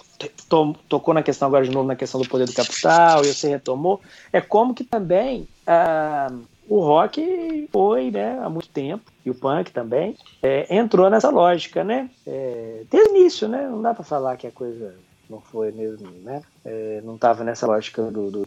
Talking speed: 190 wpm